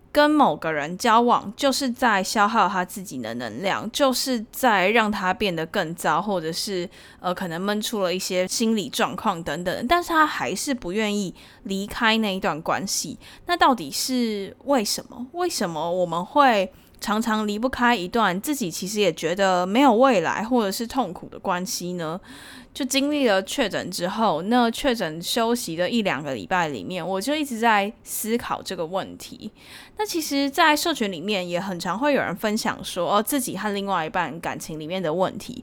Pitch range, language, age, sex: 185-255 Hz, Chinese, 10-29, female